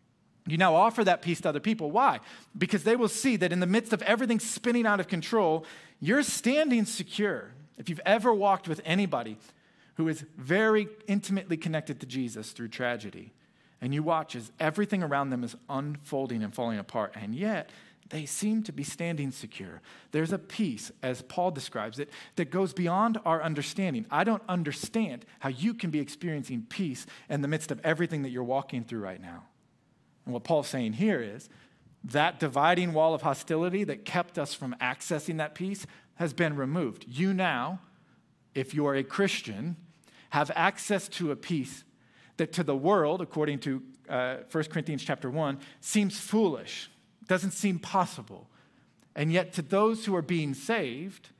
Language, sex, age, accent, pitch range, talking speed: English, male, 40-59, American, 140-195 Hz, 175 wpm